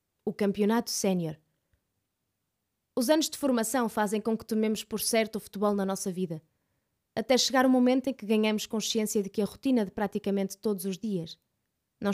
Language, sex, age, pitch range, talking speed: Portuguese, female, 20-39, 205-255 Hz, 180 wpm